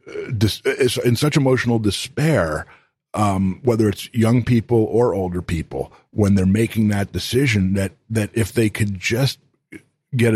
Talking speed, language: 140 wpm, English